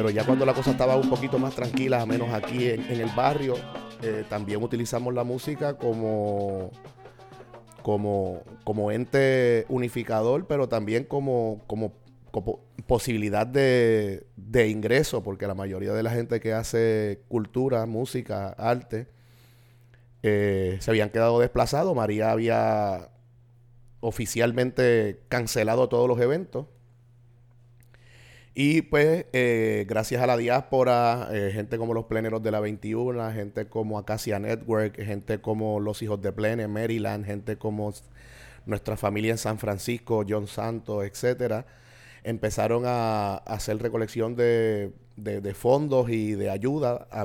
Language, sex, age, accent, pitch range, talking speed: Spanish, male, 30-49, Venezuelan, 110-125 Hz, 135 wpm